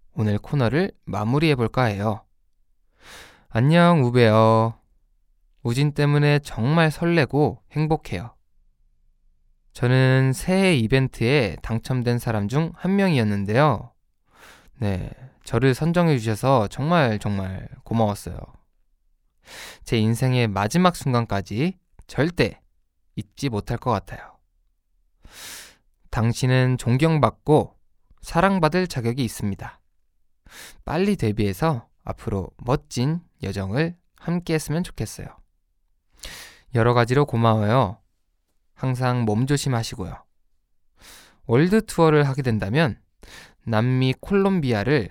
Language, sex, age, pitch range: Korean, male, 20-39, 95-145 Hz